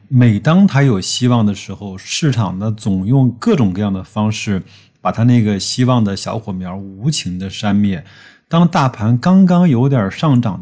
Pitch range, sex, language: 105-125 Hz, male, Chinese